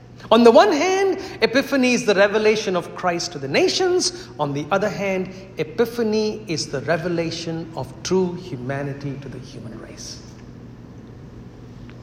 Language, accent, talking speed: English, Indian, 140 wpm